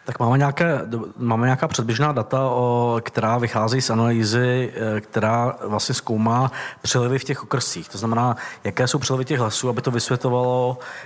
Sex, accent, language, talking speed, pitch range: male, native, Czech, 155 wpm, 115-130 Hz